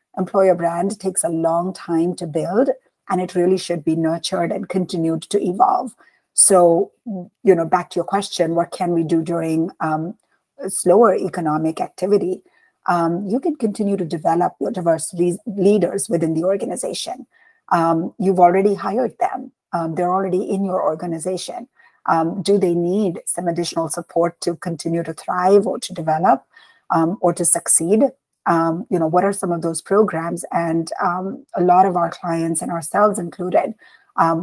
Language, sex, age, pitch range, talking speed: English, female, 50-69, 165-195 Hz, 165 wpm